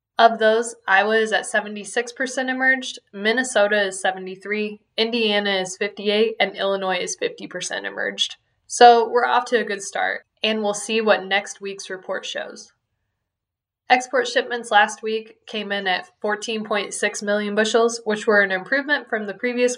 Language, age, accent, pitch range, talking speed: English, 10-29, American, 195-235 Hz, 150 wpm